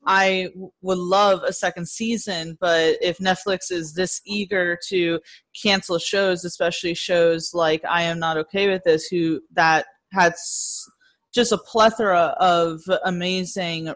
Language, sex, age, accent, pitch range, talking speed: English, female, 20-39, American, 165-195 Hz, 140 wpm